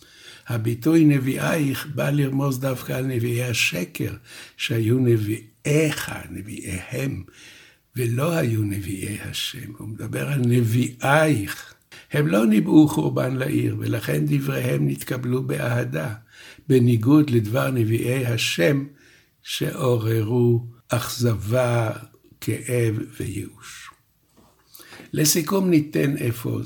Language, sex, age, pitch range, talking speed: Hebrew, male, 60-79, 115-145 Hz, 90 wpm